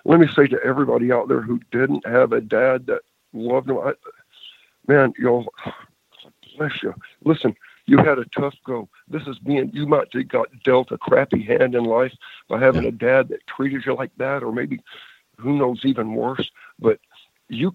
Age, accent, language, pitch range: 50-69, American, English, 130-185 Hz